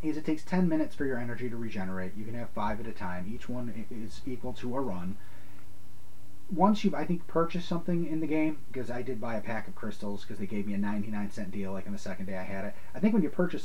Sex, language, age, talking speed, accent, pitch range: male, English, 30-49, 275 wpm, American, 100-145 Hz